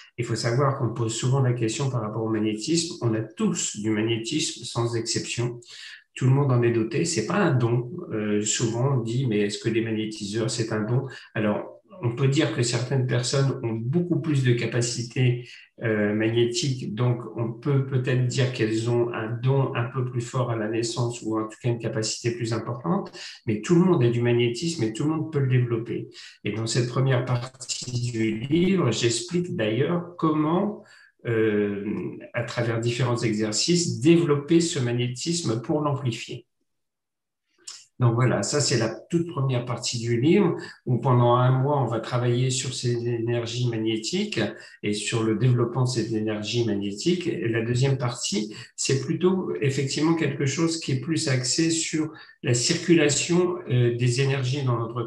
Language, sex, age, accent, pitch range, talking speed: French, male, 50-69, French, 115-140 Hz, 180 wpm